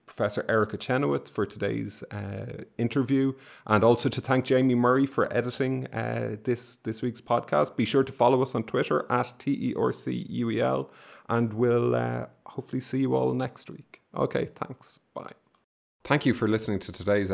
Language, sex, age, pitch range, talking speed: English, male, 30-49, 105-130 Hz, 165 wpm